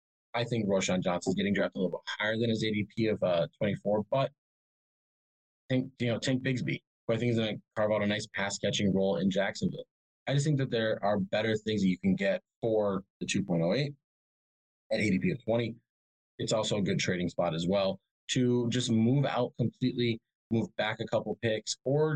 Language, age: English, 20-39